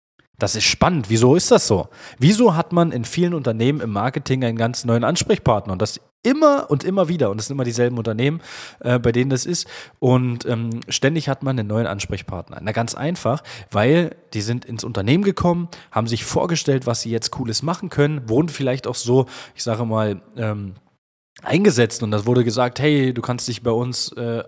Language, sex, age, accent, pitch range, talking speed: German, male, 20-39, German, 115-140 Hz, 200 wpm